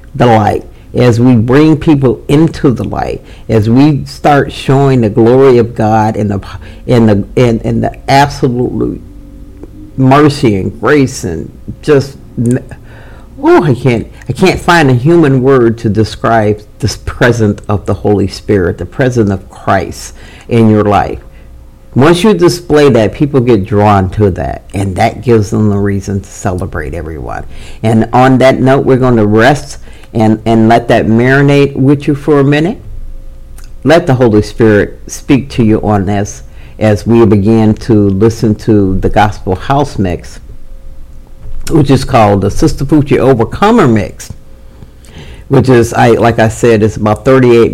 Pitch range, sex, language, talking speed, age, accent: 100-130 Hz, male, English, 160 wpm, 50-69, American